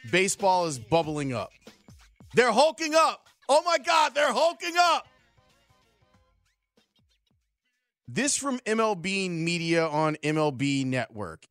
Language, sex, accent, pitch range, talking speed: English, male, American, 140-225 Hz, 105 wpm